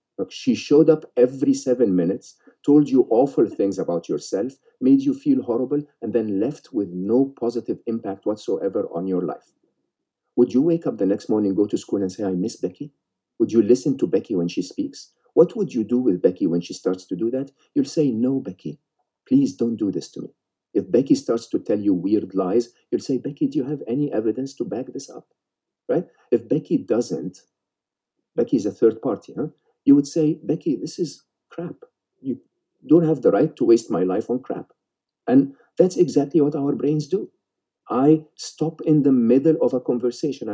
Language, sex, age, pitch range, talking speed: English, male, 50-69, 115-160 Hz, 200 wpm